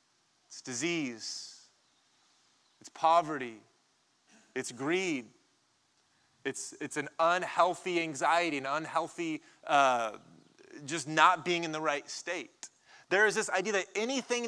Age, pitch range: 20-39, 135-180 Hz